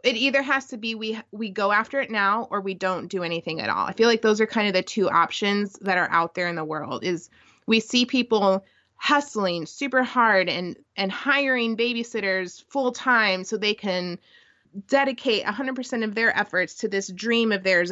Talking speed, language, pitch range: 205 wpm, English, 185-250 Hz